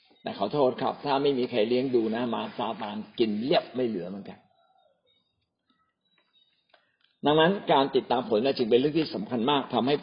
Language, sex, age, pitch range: Thai, male, 60-79, 140-215 Hz